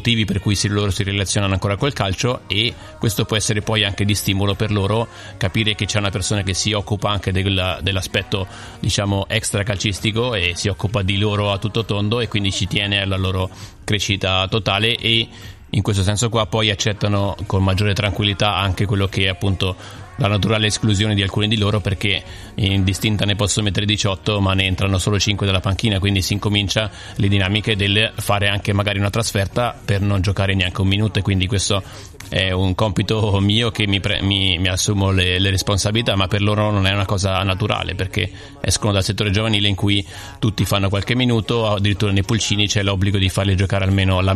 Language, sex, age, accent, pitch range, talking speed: Italian, male, 30-49, native, 95-105 Hz, 195 wpm